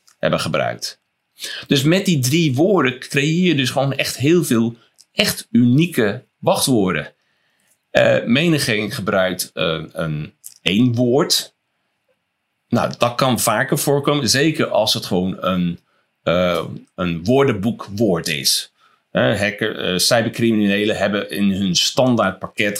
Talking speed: 120 wpm